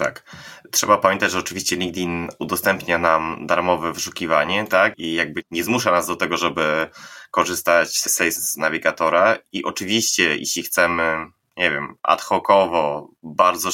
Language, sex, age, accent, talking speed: Polish, male, 20-39, native, 140 wpm